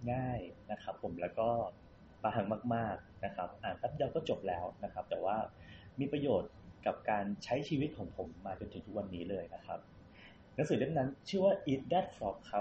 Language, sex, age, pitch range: Thai, male, 20-39, 100-135 Hz